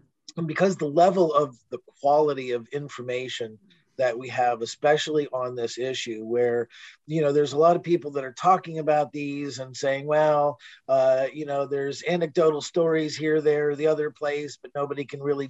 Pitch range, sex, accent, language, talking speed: 125-150 Hz, male, American, English, 180 wpm